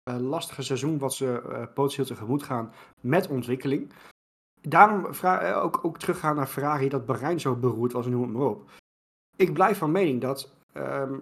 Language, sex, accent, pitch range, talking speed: Dutch, male, Dutch, 130-165 Hz, 175 wpm